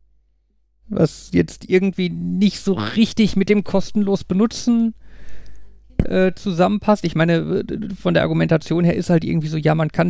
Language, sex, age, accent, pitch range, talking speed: German, male, 50-69, German, 160-205 Hz, 150 wpm